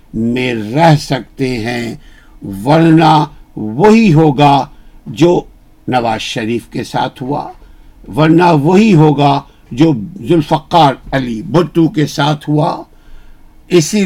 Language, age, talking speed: Urdu, 60-79, 100 wpm